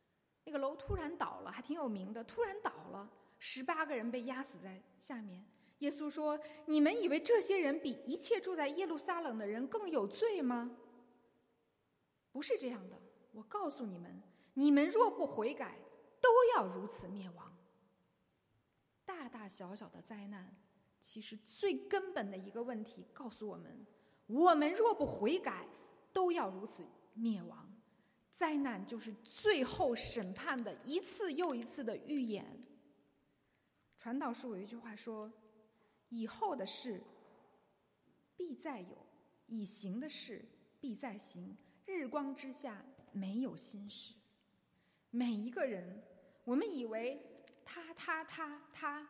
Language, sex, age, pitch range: Chinese, female, 20-39, 210-300 Hz